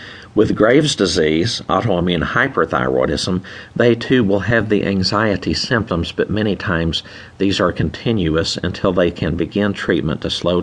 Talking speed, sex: 140 wpm, male